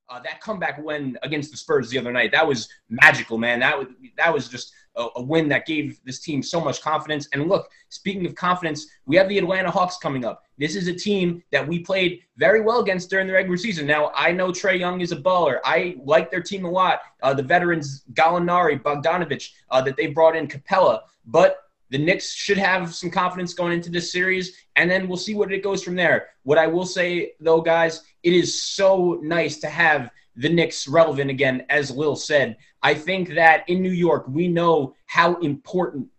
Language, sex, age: English, male, 20-39